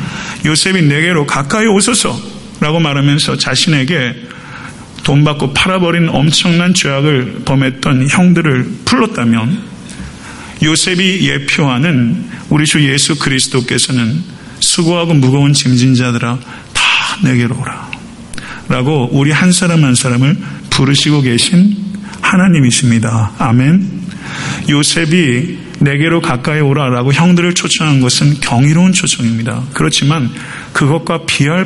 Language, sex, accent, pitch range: Korean, male, native, 125-170 Hz